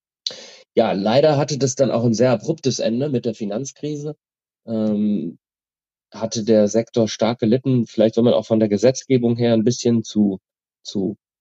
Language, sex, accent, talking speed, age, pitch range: German, male, German, 165 wpm, 30-49, 95-115 Hz